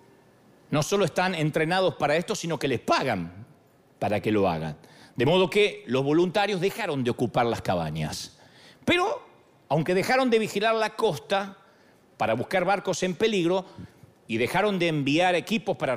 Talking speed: 160 wpm